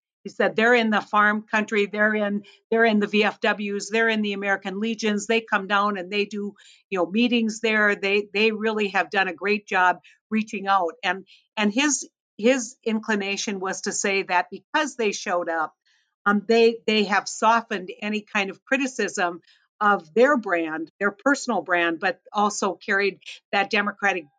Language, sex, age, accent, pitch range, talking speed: English, female, 60-79, American, 185-220 Hz, 175 wpm